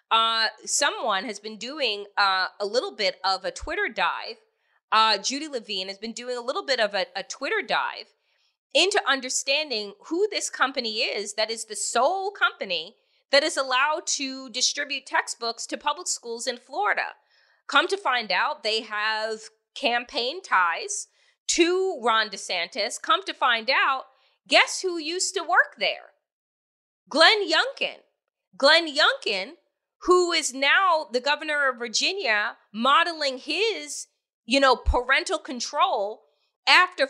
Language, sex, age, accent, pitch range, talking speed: English, female, 30-49, American, 225-370 Hz, 140 wpm